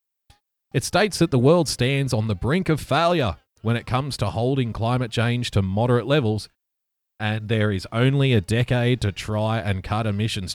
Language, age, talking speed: English, 30-49, 180 wpm